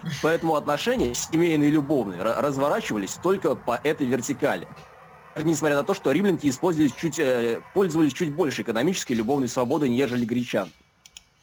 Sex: male